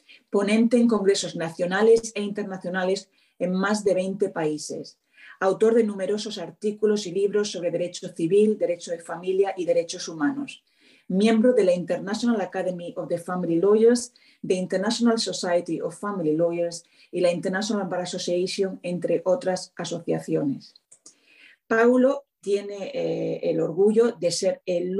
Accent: Spanish